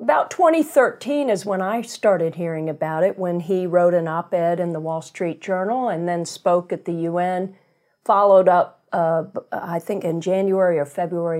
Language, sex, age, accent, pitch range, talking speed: English, female, 50-69, American, 175-220 Hz, 180 wpm